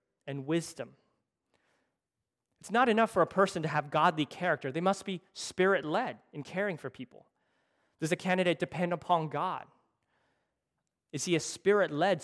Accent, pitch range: American, 145-190 Hz